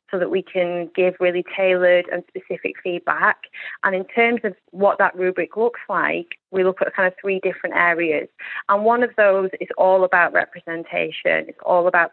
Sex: female